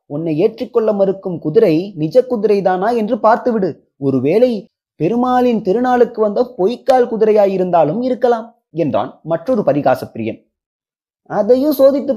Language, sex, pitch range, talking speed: Tamil, male, 155-250 Hz, 100 wpm